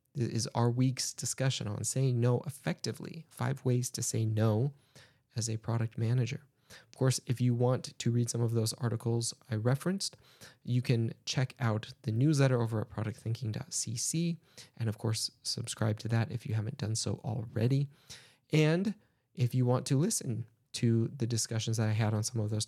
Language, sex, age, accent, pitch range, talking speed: English, male, 20-39, American, 115-135 Hz, 175 wpm